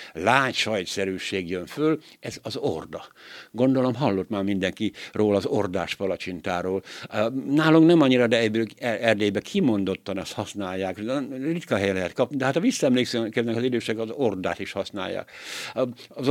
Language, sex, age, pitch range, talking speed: Hungarian, male, 60-79, 100-130 Hz, 135 wpm